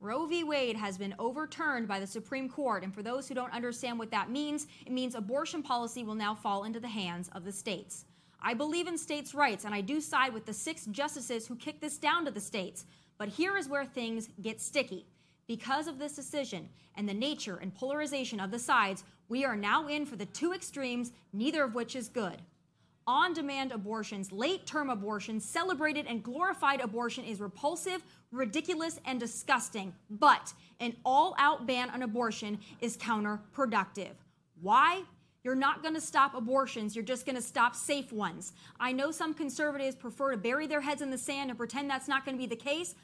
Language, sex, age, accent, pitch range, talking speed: English, female, 30-49, American, 220-285 Hz, 195 wpm